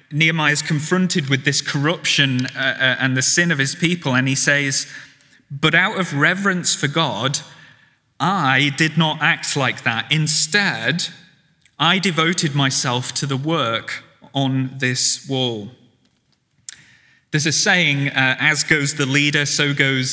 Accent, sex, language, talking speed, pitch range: British, male, English, 145 wpm, 130-160 Hz